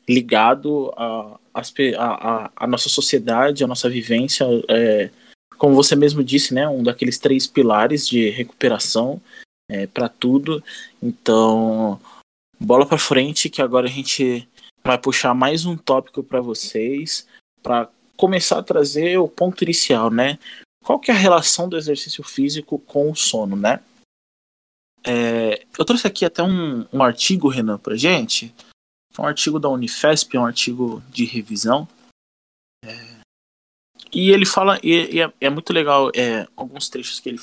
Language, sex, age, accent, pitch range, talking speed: Portuguese, male, 20-39, Brazilian, 115-160 Hz, 150 wpm